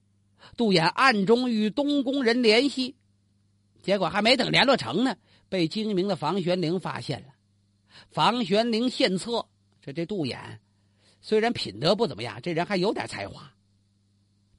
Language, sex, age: Chinese, male, 50-69